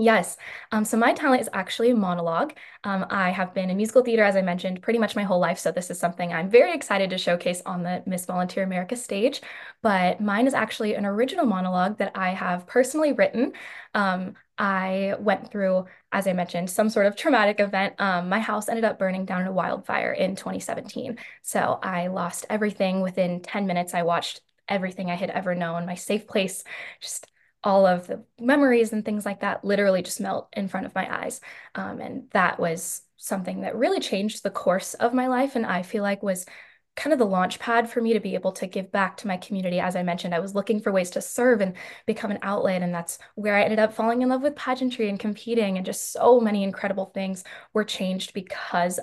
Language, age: English, 10-29